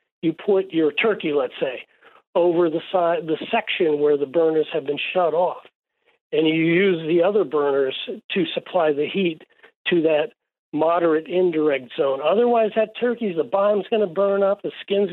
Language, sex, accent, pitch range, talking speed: English, male, American, 160-220 Hz, 175 wpm